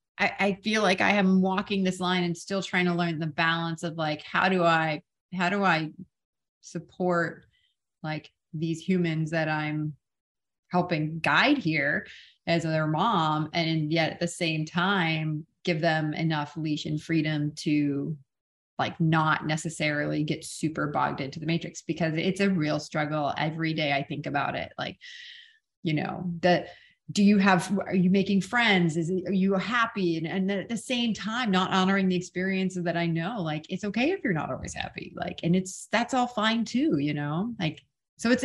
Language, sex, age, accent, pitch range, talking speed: English, female, 30-49, American, 155-190 Hz, 180 wpm